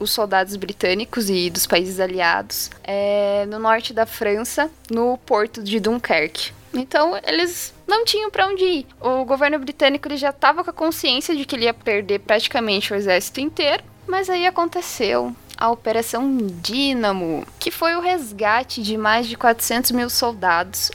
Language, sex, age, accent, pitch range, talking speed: Portuguese, female, 10-29, Brazilian, 225-305 Hz, 165 wpm